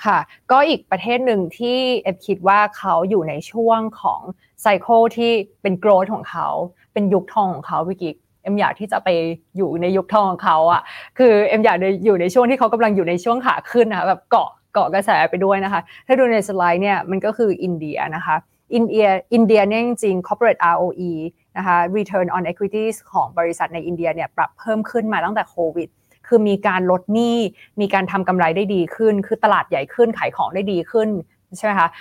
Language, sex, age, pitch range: Thai, female, 20-39, 180-225 Hz